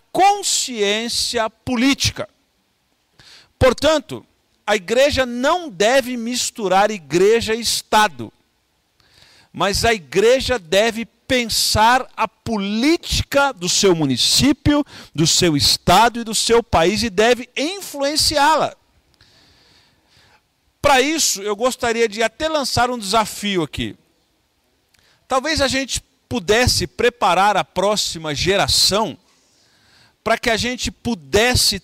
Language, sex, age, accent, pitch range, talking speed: Portuguese, male, 50-69, Brazilian, 190-255 Hz, 100 wpm